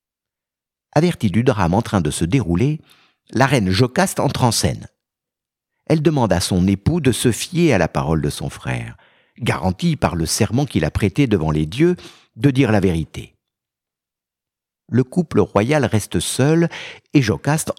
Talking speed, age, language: 165 wpm, 60-79, French